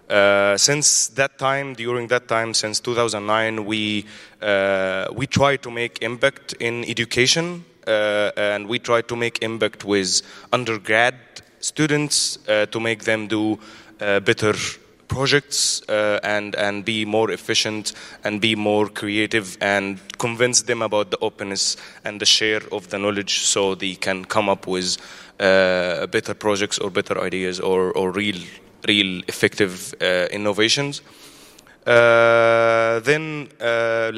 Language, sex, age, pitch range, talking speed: English, male, 20-39, 100-120 Hz, 140 wpm